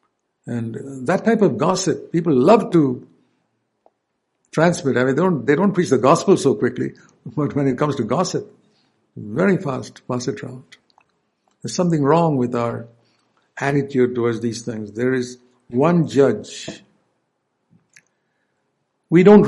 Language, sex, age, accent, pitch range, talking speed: English, male, 60-79, Indian, 125-150 Hz, 140 wpm